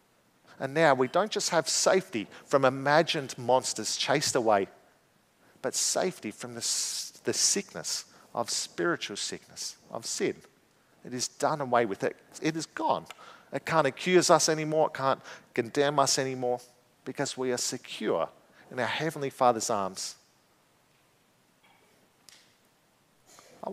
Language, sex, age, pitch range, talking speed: English, male, 40-59, 120-150 Hz, 130 wpm